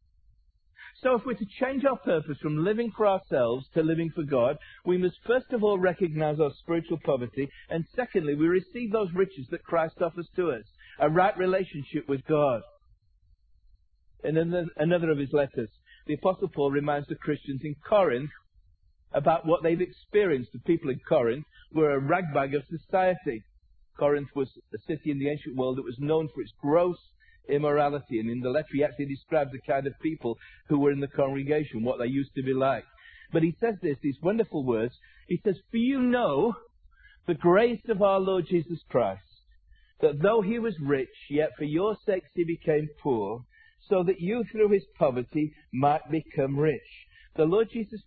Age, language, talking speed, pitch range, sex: 50-69, English, 180 wpm, 140-190 Hz, male